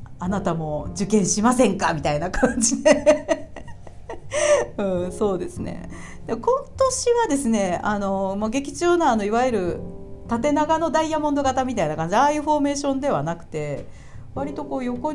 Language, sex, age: Japanese, female, 40-59